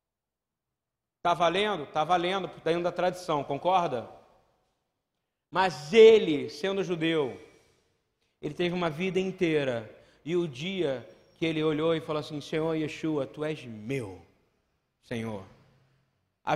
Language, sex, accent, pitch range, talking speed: Portuguese, male, Brazilian, 140-170 Hz, 125 wpm